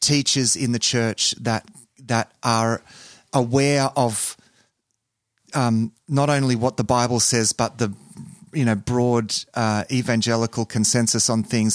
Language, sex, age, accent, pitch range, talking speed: English, male, 30-49, Australian, 105-125 Hz, 135 wpm